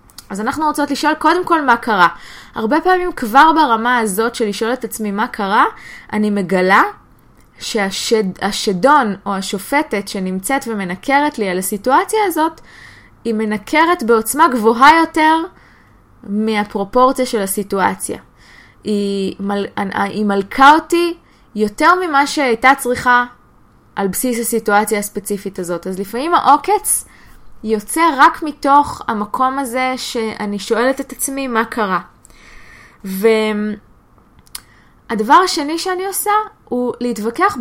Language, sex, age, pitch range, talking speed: Hebrew, female, 20-39, 210-290 Hz, 120 wpm